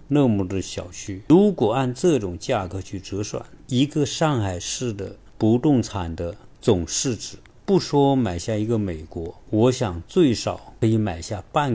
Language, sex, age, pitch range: Chinese, male, 50-69, 95-130 Hz